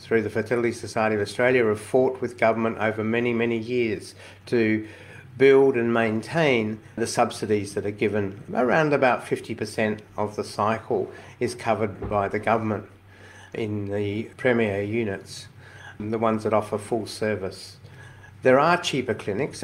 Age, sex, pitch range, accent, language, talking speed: 50-69, male, 105-120 Hz, Australian, English, 145 wpm